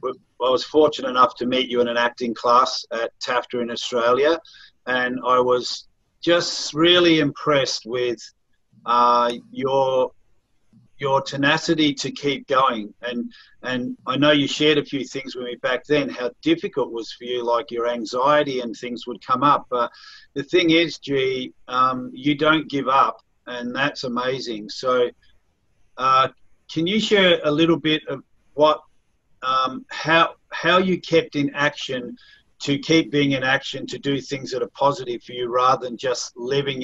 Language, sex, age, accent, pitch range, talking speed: English, male, 50-69, Australian, 125-155 Hz, 170 wpm